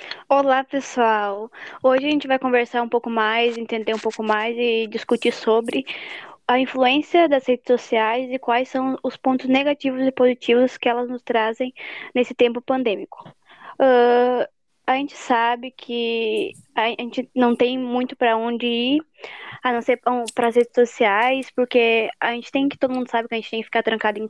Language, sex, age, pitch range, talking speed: Portuguese, female, 20-39, 240-275 Hz, 180 wpm